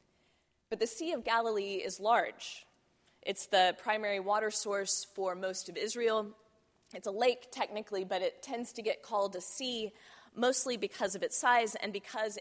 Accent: American